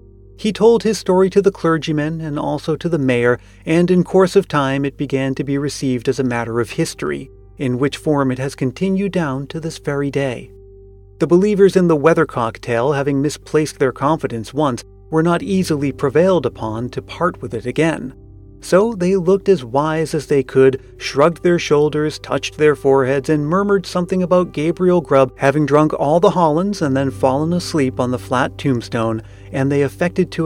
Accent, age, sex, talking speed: American, 30-49, male, 190 wpm